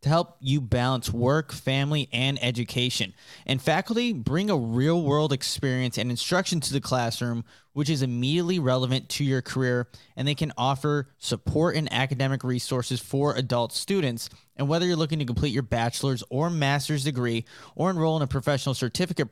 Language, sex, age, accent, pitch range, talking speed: English, male, 20-39, American, 125-150 Hz, 165 wpm